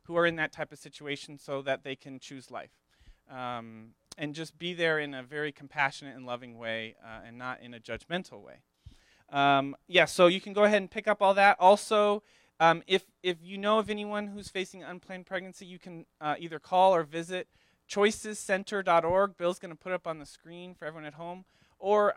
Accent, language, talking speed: American, English, 210 wpm